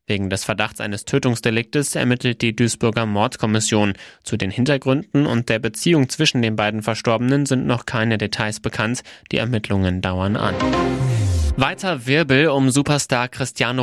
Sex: male